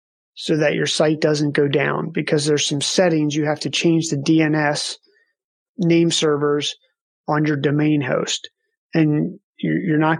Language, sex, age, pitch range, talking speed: English, male, 30-49, 145-175 Hz, 155 wpm